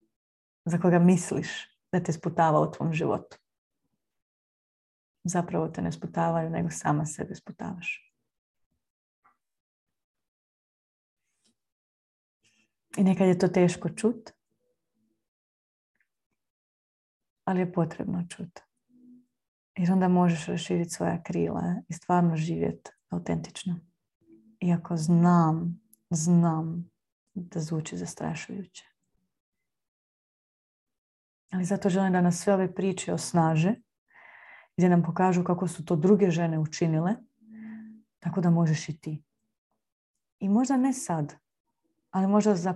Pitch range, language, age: 160-195 Hz, Croatian, 30-49